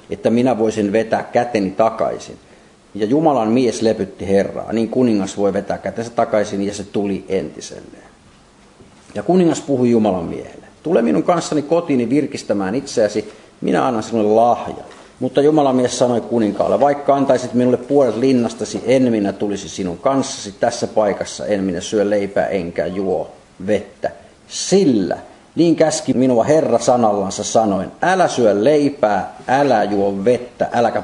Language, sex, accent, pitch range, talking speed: Finnish, male, native, 100-125 Hz, 145 wpm